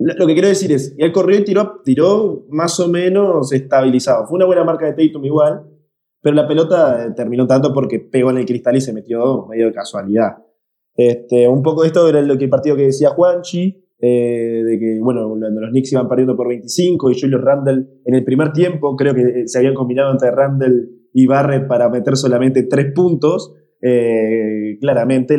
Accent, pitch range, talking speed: Argentinian, 125-160 Hz, 195 wpm